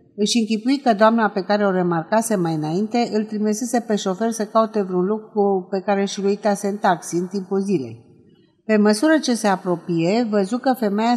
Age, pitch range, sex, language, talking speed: 50-69, 175-230 Hz, female, Romanian, 195 wpm